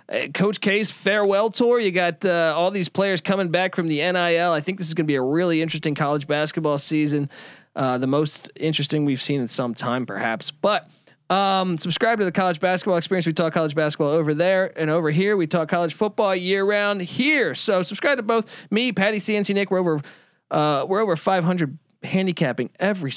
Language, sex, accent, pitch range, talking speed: English, male, American, 155-200 Hz, 200 wpm